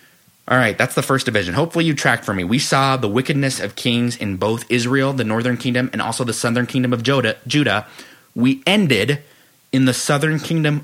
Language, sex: English, male